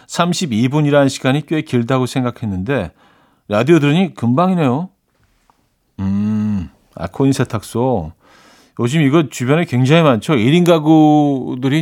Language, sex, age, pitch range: Korean, male, 40-59, 110-155 Hz